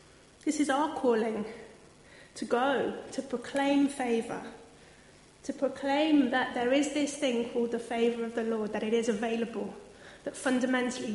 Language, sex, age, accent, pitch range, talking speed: English, female, 30-49, British, 225-280 Hz, 150 wpm